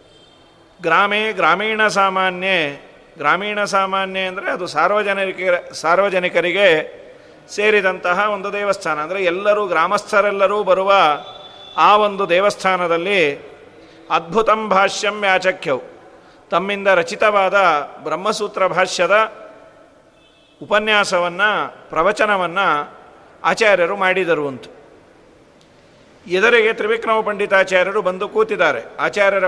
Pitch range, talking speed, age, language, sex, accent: 190-210 Hz, 75 wpm, 40-59, Kannada, male, native